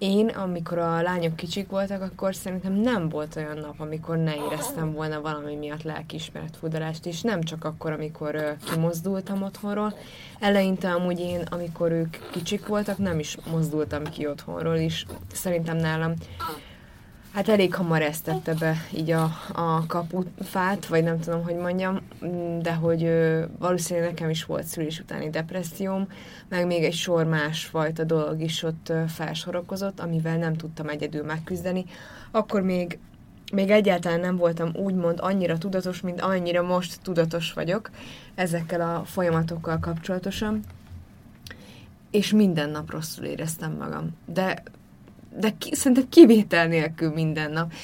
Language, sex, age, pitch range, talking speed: Hungarian, female, 20-39, 160-190 Hz, 140 wpm